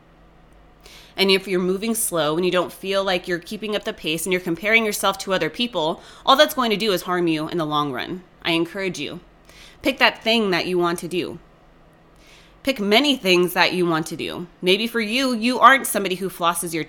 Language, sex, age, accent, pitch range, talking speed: English, female, 20-39, American, 185-225 Hz, 220 wpm